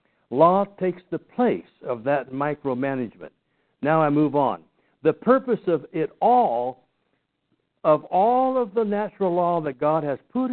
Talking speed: 150 wpm